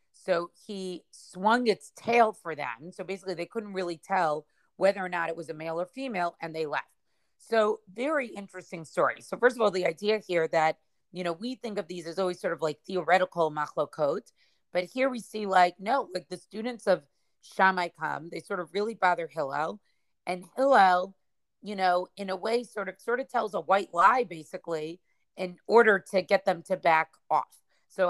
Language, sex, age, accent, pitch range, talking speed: English, female, 30-49, American, 170-205 Hz, 200 wpm